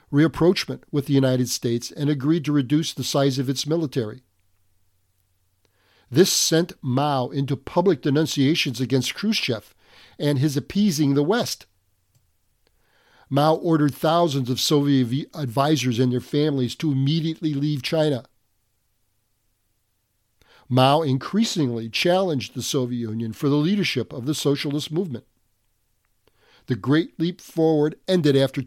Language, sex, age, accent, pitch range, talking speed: English, male, 50-69, American, 120-155 Hz, 125 wpm